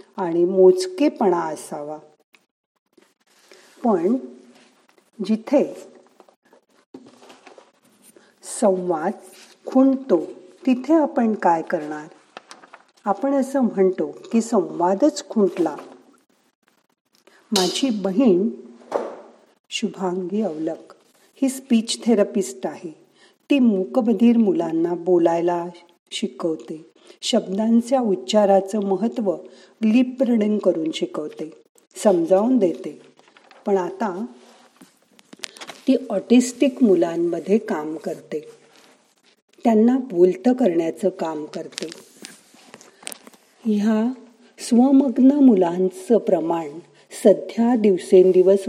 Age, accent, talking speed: 50-69, native, 50 wpm